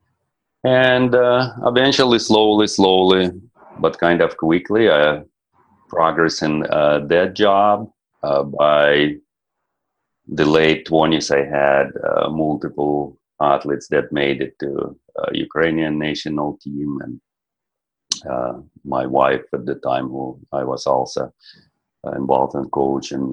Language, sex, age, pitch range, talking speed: English, male, 40-59, 75-100 Hz, 125 wpm